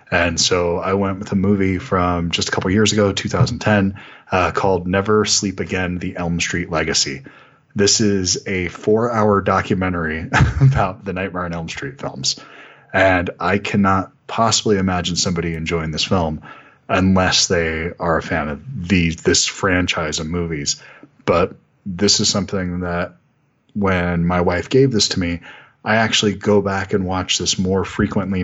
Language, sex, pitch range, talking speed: English, male, 85-105 Hz, 160 wpm